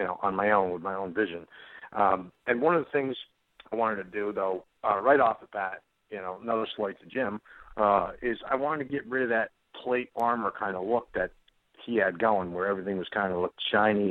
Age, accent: 50-69, American